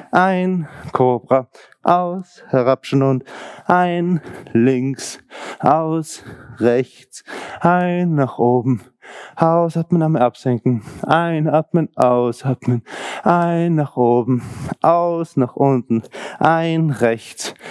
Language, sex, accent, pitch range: German, male, German, 130-170 Hz